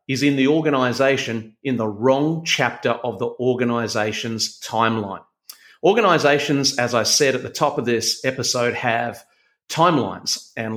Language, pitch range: English, 120-150 Hz